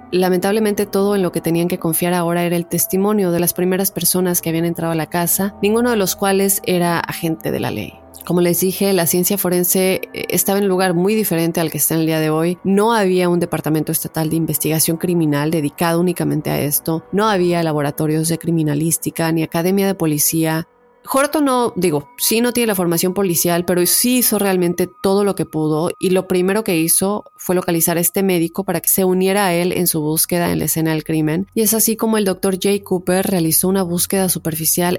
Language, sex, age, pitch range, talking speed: Spanish, female, 30-49, 165-195 Hz, 215 wpm